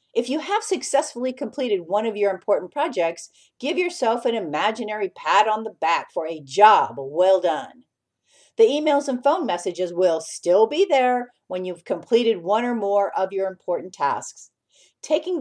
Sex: female